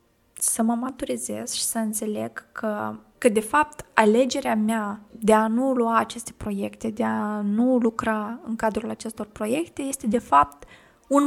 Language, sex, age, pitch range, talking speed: Romanian, female, 20-39, 210-250 Hz, 160 wpm